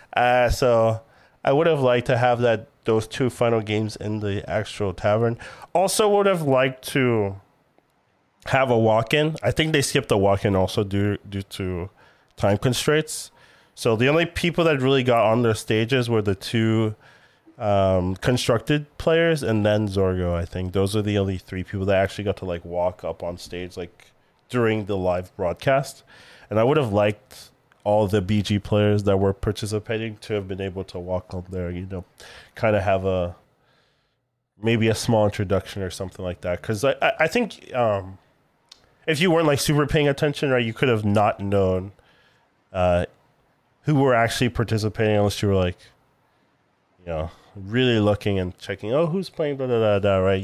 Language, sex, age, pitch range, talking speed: English, male, 20-39, 95-125 Hz, 185 wpm